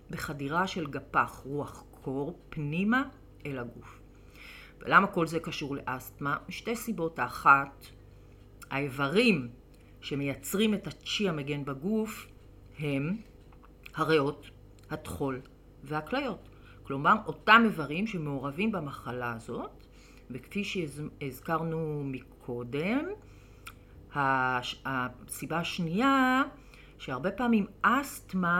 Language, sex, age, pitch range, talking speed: English, female, 40-59, 125-180 Hz, 85 wpm